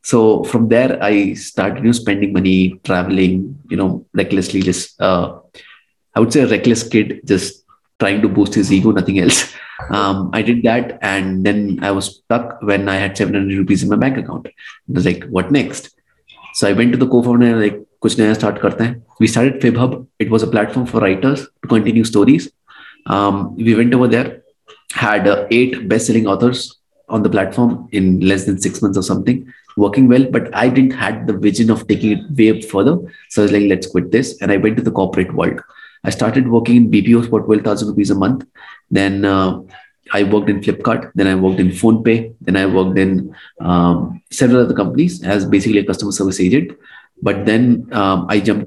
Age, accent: 30-49, Indian